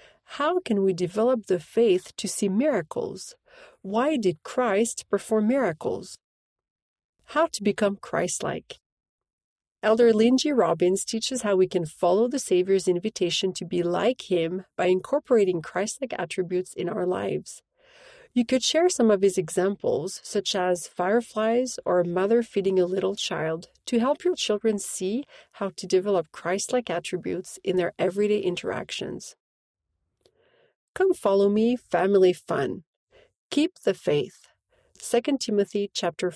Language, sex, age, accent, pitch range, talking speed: English, female, 40-59, Canadian, 185-255 Hz, 135 wpm